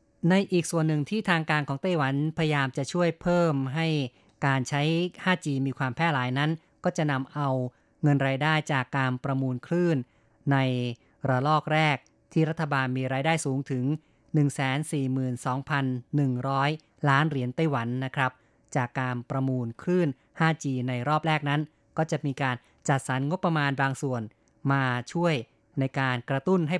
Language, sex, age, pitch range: Thai, female, 20-39, 130-160 Hz